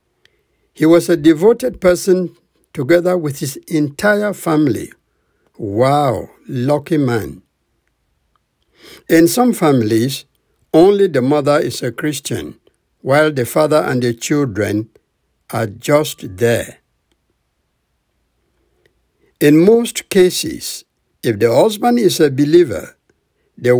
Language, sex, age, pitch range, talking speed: English, male, 60-79, 130-175 Hz, 105 wpm